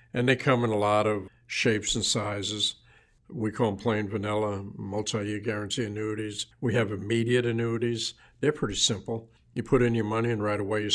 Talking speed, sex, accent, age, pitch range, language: 185 wpm, male, American, 60-79, 105-115 Hz, English